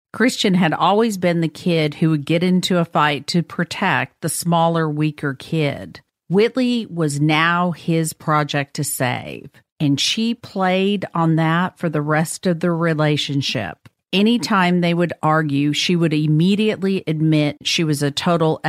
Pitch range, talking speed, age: 150-175 Hz, 155 wpm, 50-69